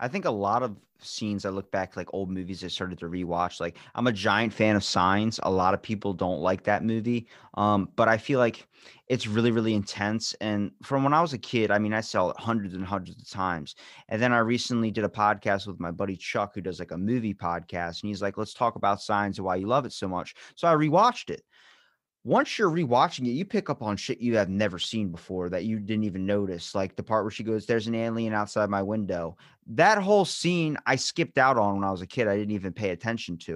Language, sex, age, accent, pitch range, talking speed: English, male, 20-39, American, 100-130 Hz, 250 wpm